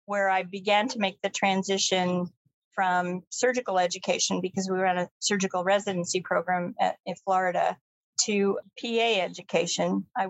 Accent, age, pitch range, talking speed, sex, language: American, 40-59, 180-205 Hz, 140 wpm, female, English